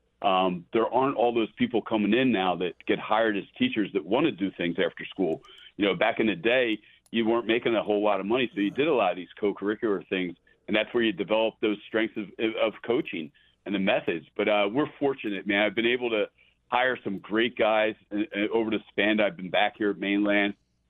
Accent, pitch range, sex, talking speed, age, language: American, 100-115 Hz, male, 225 wpm, 40-59, English